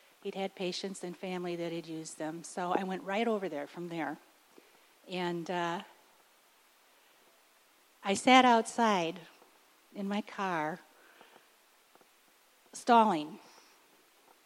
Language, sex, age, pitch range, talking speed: English, female, 50-69, 180-230 Hz, 110 wpm